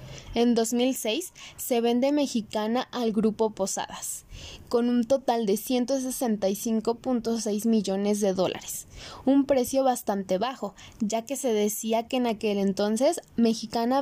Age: 10-29